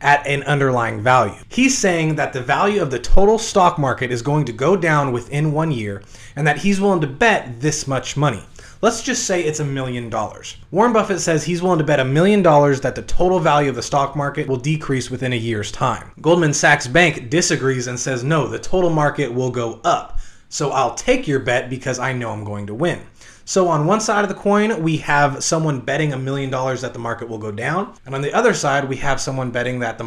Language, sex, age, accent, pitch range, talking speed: English, male, 30-49, American, 125-170 Hz, 235 wpm